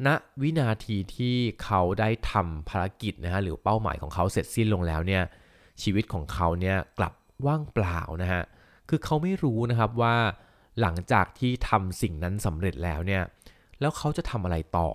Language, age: Thai, 20-39